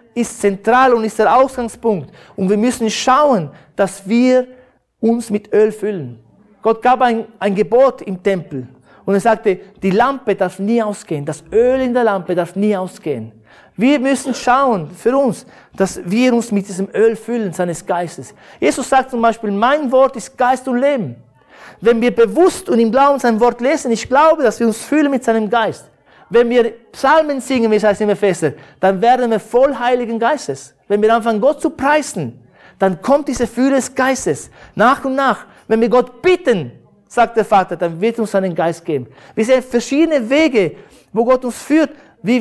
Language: German